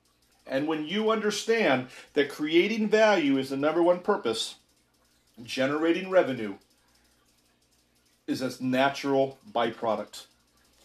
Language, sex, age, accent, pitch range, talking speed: English, male, 40-59, American, 130-170 Hz, 100 wpm